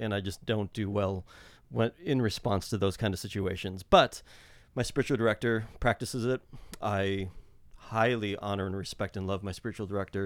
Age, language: 30-49, English